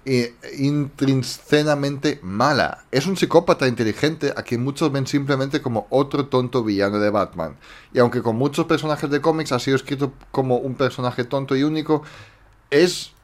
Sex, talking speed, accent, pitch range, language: male, 155 wpm, Spanish, 110-145 Hz, Spanish